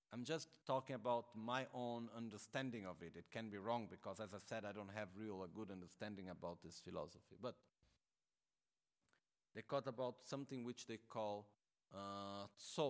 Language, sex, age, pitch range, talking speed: Italian, male, 40-59, 105-125 Hz, 170 wpm